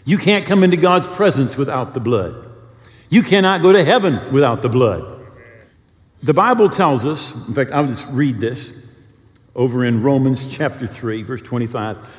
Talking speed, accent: 165 wpm, American